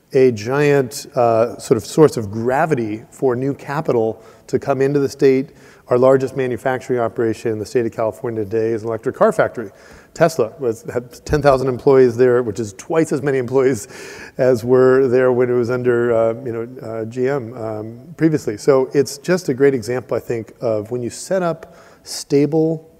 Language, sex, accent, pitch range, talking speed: English, male, American, 120-140 Hz, 185 wpm